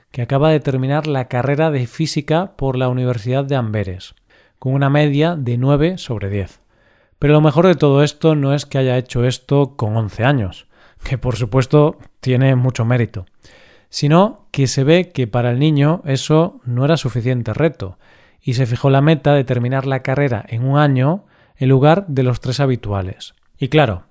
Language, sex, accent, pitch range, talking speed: Spanish, male, Spanish, 125-155 Hz, 185 wpm